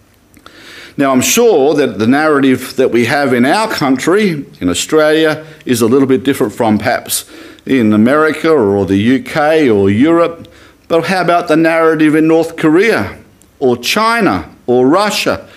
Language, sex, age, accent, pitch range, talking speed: English, male, 50-69, Australian, 120-160 Hz, 155 wpm